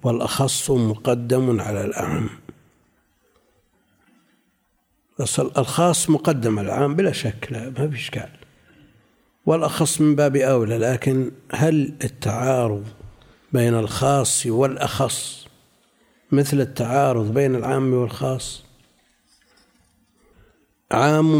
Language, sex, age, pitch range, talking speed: Arabic, male, 60-79, 115-140 Hz, 85 wpm